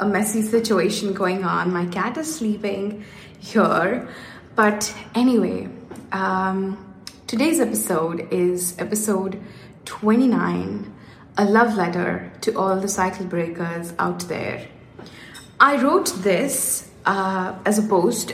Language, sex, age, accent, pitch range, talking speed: English, female, 20-39, Indian, 185-215 Hz, 110 wpm